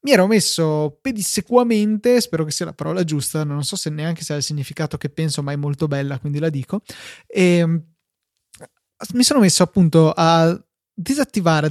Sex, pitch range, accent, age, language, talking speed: male, 155-195 Hz, native, 20-39, Italian, 170 wpm